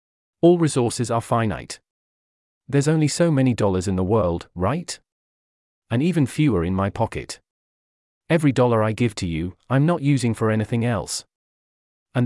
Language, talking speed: English, 155 wpm